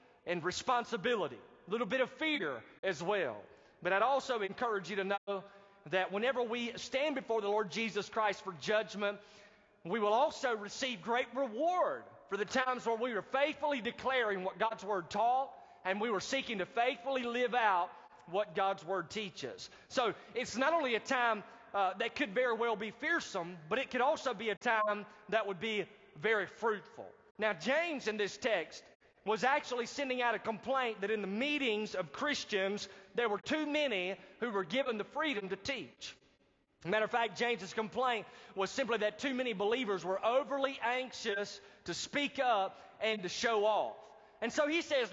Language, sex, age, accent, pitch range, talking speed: English, male, 30-49, American, 205-255 Hz, 180 wpm